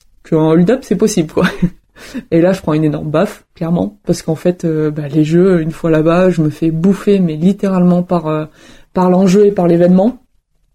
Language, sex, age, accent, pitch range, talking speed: French, female, 20-39, French, 170-200 Hz, 200 wpm